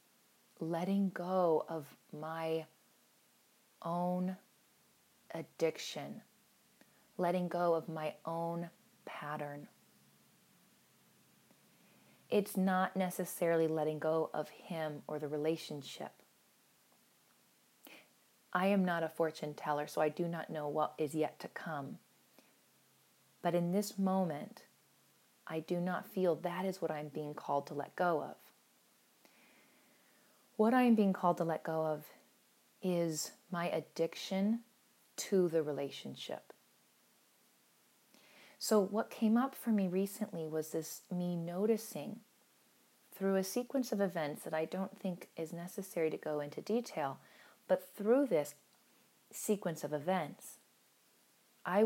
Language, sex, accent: English, female, American